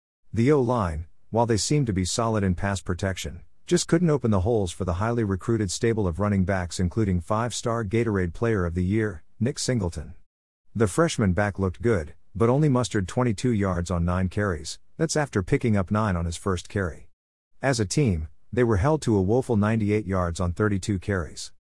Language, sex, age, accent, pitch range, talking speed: English, male, 50-69, American, 90-115 Hz, 190 wpm